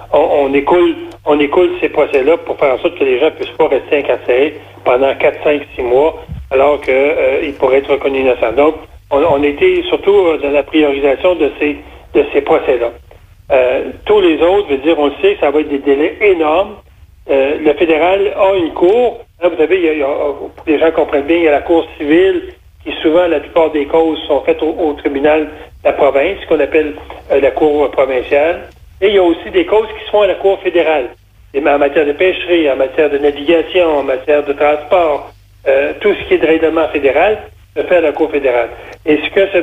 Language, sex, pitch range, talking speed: French, male, 145-195 Hz, 225 wpm